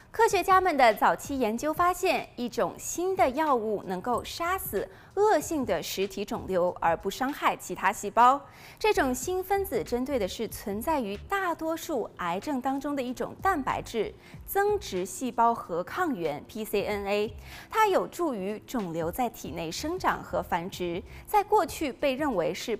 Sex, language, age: female, Chinese, 20-39